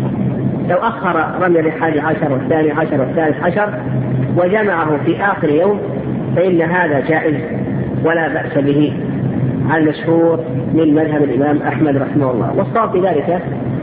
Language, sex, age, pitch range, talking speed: Arabic, female, 50-69, 140-175 Hz, 120 wpm